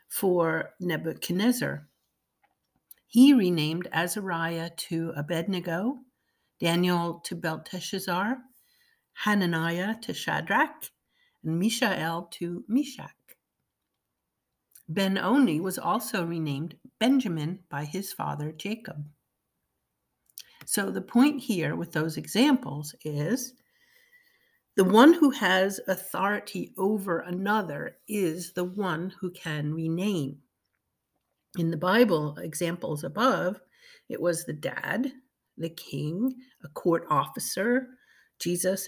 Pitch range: 165-245 Hz